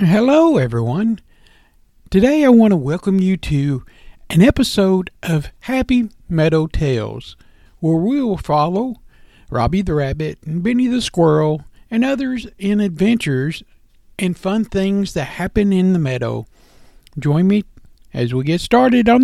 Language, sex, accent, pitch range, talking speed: English, male, American, 155-220 Hz, 140 wpm